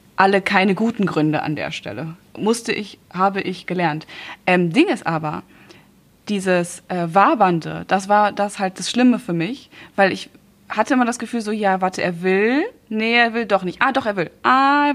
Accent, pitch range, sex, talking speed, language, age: German, 185-245 Hz, female, 195 wpm, German, 20-39